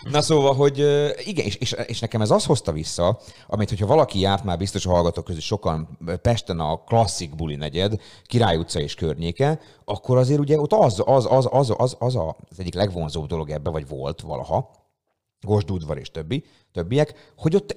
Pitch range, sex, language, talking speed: 90-120 Hz, male, Hungarian, 195 wpm